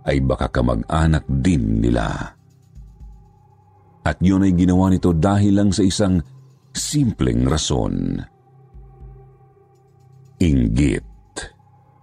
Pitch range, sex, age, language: 90-130 Hz, male, 50-69, Filipino